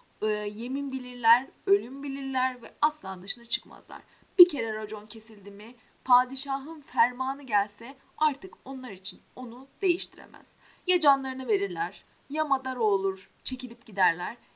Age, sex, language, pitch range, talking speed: 30-49, female, Turkish, 215-300 Hz, 120 wpm